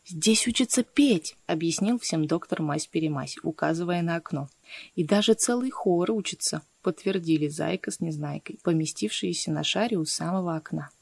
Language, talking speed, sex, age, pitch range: Russian, 145 wpm, female, 20-39, 160-225 Hz